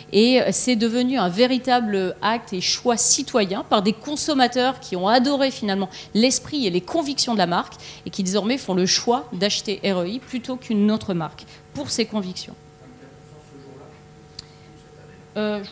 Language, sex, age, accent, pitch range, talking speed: French, female, 40-59, French, 180-240 Hz, 155 wpm